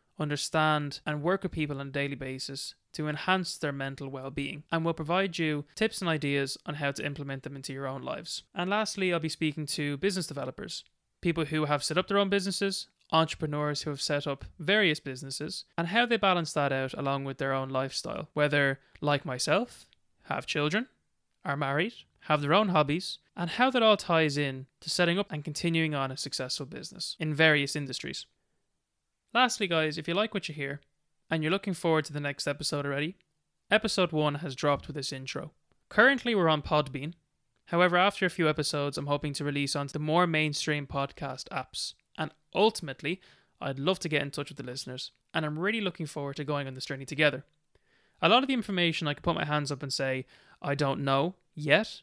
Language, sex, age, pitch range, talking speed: English, male, 20-39, 140-175 Hz, 200 wpm